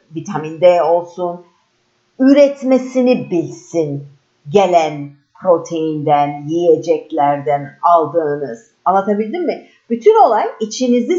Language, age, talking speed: Turkish, 50-69, 75 wpm